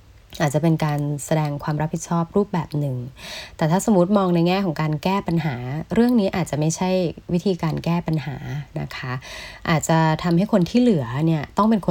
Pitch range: 145-180 Hz